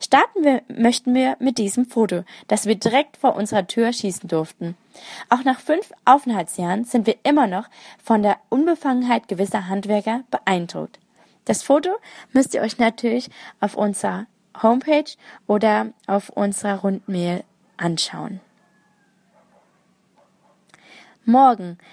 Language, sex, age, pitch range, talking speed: German, female, 20-39, 195-245 Hz, 120 wpm